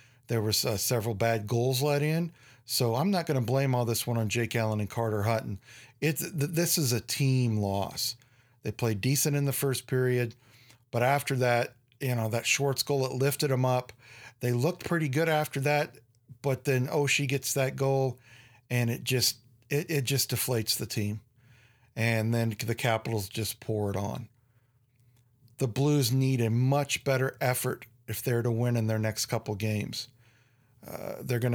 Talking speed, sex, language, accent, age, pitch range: 185 wpm, male, English, American, 40-59, 115-130 Hz